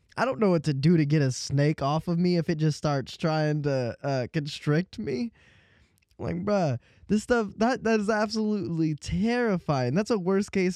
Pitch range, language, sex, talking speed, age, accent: 140-185 Hz, English, male, 190 wpm, 10-29, American